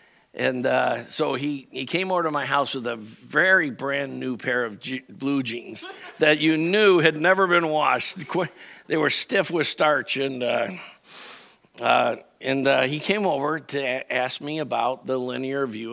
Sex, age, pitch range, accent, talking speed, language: male, 60-79, 125-160 Hz, American, 175 wpm, English